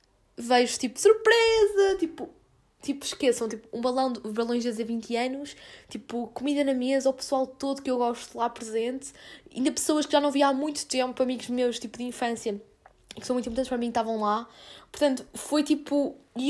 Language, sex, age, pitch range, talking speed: Portuguese, female, 10-29, 235-295 Hz, 195 wpm